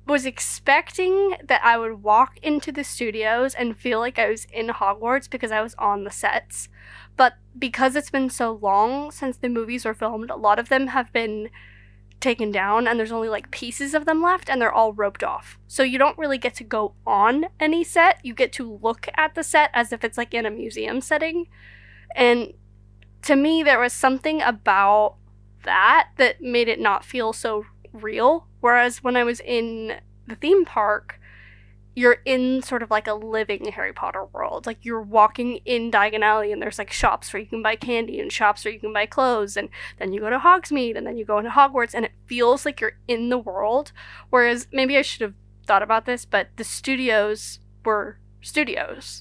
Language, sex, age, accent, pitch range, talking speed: English, female, 20-39, American, 210-260 Hz, 205 wpm